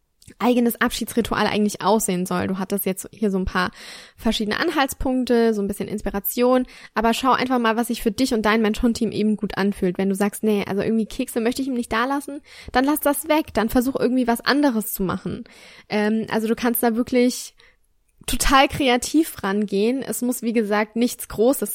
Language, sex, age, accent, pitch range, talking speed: German, female, 10-29, German, 210-250 Hz, 200 wpm